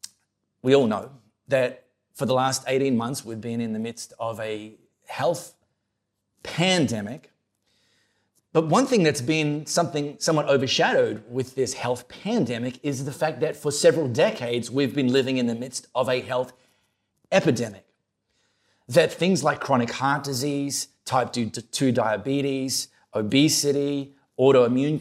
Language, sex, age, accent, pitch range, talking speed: English, male, 30-49, Australian, 115-145 Hz, 140 wpm